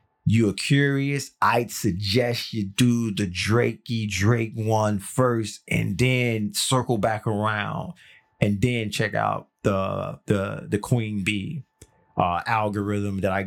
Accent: American